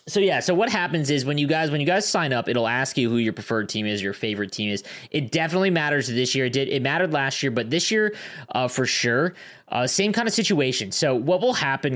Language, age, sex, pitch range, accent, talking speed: English, 20-39, male, 115-155 Hz, American, 260 wpm